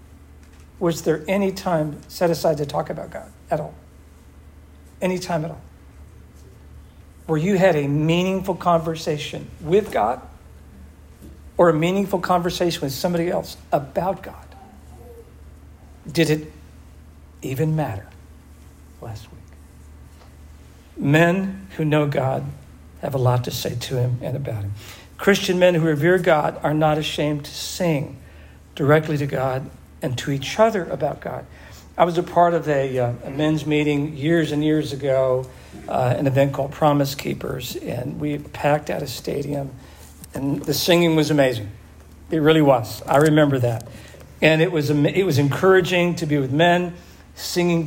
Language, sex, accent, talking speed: English, male, American, 150 wpm